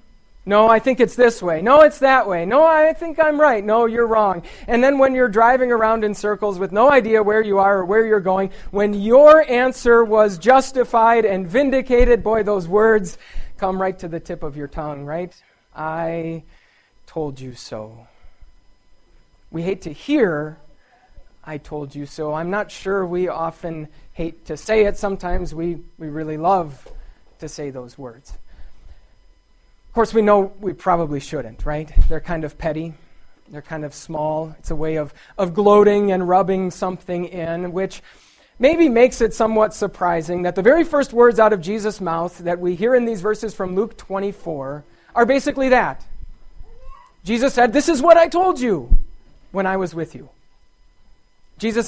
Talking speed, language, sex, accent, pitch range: 175 wpm, English, male, American, 160-225 Hz